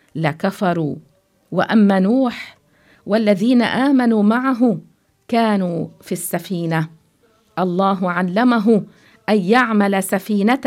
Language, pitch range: English, 175-230 Hz